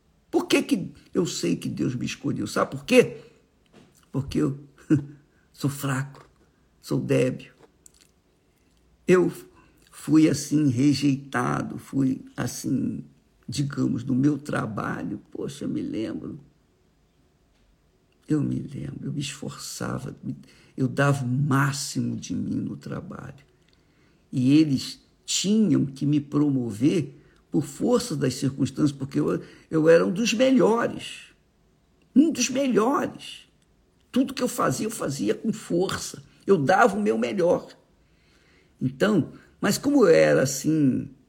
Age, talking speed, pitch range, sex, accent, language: 60-79, 120 wpm, 130-210 Hz, male, Brazilian, Portuguese